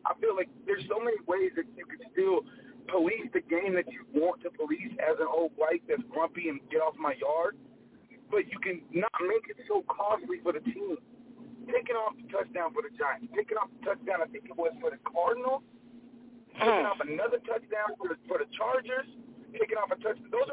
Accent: American